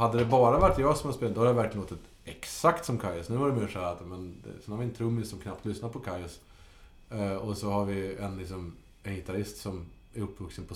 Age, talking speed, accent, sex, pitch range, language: 30-49, 260 wpm, Norwegian, male, 95-115 Hz, Swedish